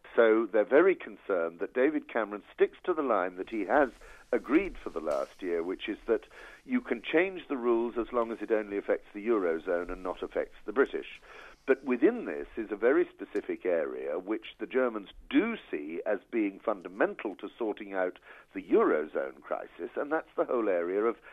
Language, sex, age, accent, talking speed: English, male, 50-69, British, 190 wpm